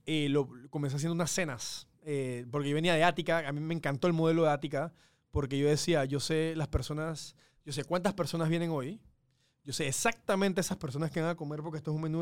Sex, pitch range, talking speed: male, 145-180 Hz, 230 wpm